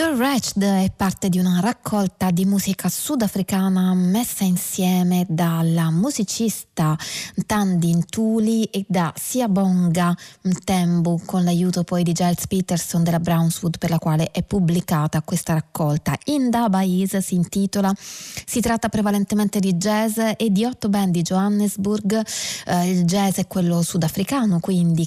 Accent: native